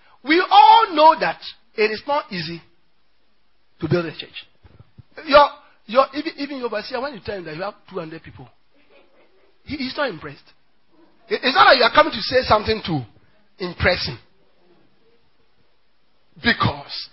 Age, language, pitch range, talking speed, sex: 40-59, English, 200-305 Hz, 150 wpm, male